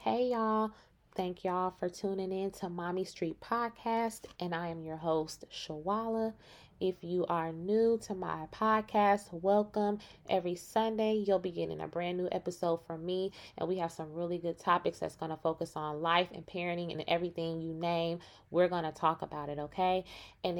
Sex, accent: female, American